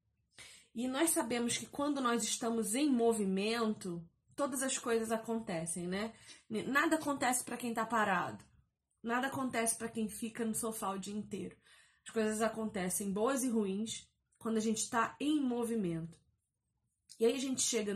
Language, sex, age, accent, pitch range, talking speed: Portuguese, female, 20-39, Brazilian, 210-255 Hz, 155 wpm